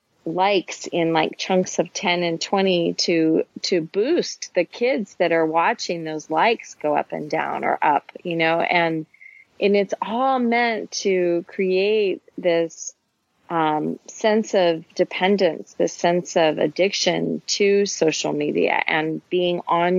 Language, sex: English, female